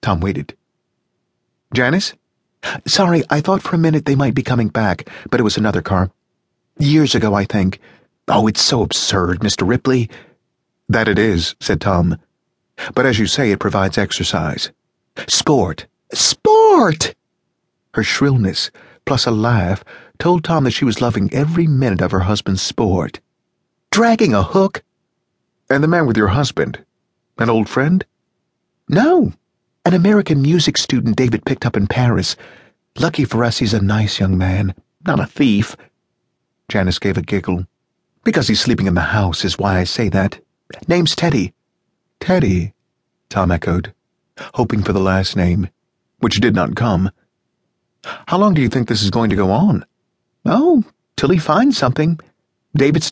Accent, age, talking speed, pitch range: American, 40-59, 155 wpm, 100-145 Hz